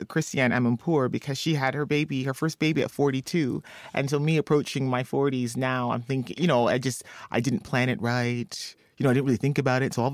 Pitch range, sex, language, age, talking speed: 115-150 Hz, male, English, 30-49, 235 wpm